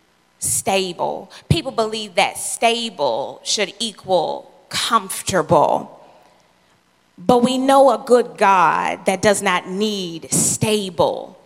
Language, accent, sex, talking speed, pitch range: English, American, female, 100 wpm, 180-220 Hz